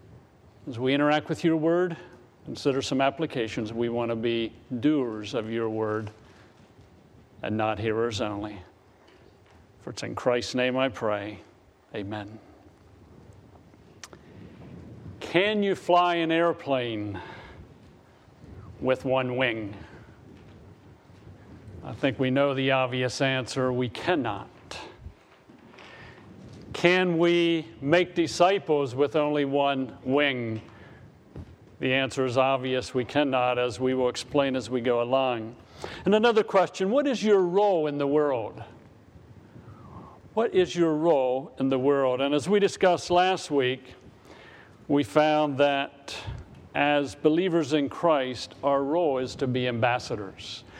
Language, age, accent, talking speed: English, 50-69, American, 125 wpm